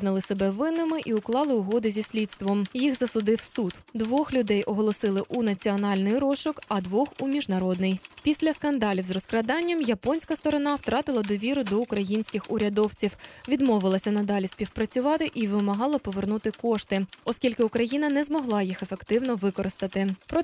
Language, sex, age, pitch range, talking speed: Ukrainian, female, 20-39, 200-255 Hz, 140 wpm